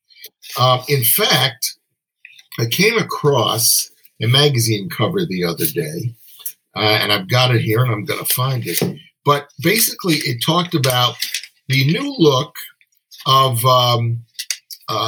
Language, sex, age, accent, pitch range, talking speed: English, male, 50-69, American, 115-155 Hz, 140 wpm